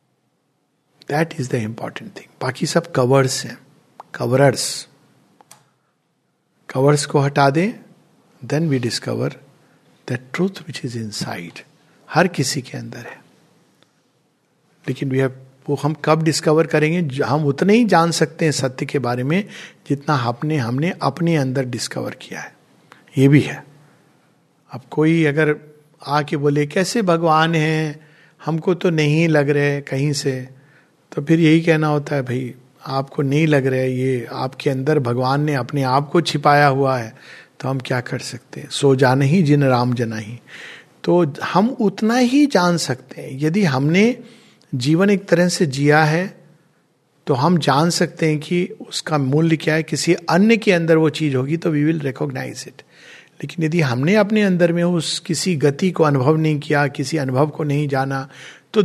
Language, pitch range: Hindi, 135-165 Hz